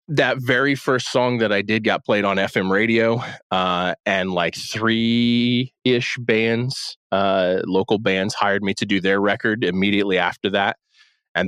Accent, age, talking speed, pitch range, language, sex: American, 20-39, 155 wpm, 90-115 Hz, English, male